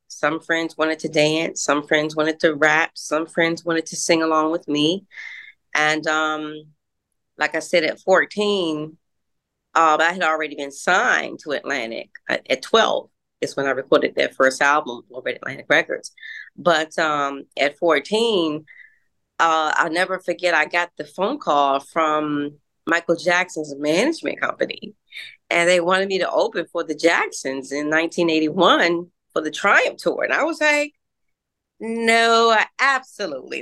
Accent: American